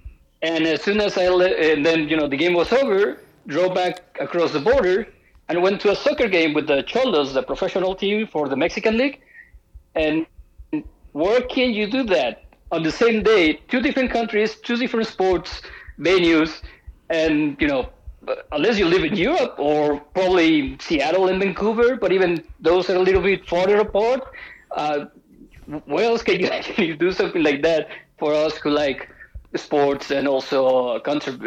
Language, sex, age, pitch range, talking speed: English, male, 50-69, 140-190 Hz, 175 wpm